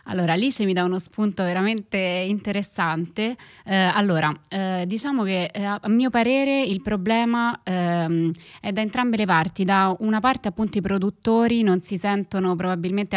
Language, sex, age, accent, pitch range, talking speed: Italian, female, 20-39, native, 175-205 Hz, 160 wpm